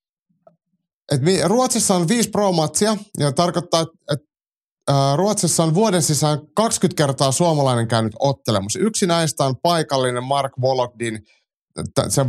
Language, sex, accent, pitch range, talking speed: Finnish, male, native, 120-165 Hz, 115 wpm